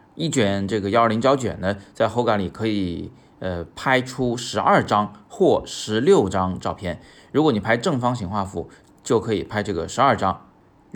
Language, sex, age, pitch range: Chinese, male, 20-39, 90-115 Hz